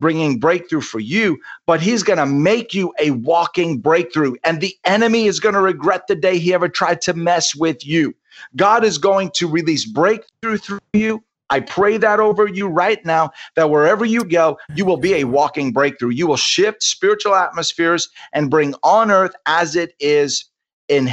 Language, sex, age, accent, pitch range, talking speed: English, male, 40-59, American, 140-190 Hz, 190 wpm